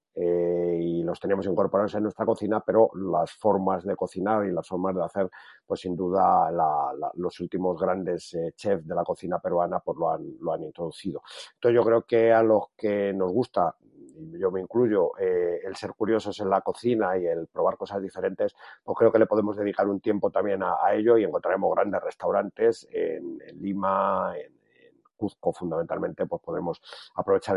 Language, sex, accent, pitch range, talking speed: Spanish, male, Spanish, 95-115 Hz, 185 wpm